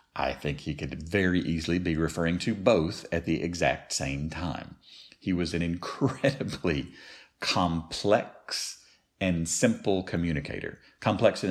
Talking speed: 130 wpm